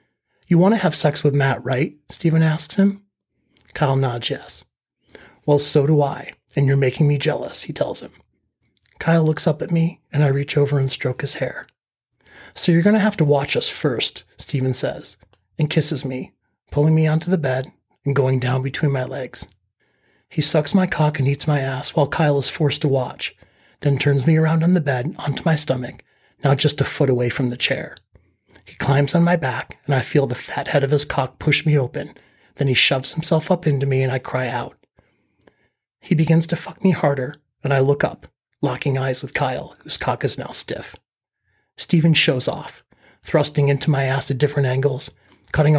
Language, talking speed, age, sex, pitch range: English, 200 wpm, 30-49, male, 135-155 Hz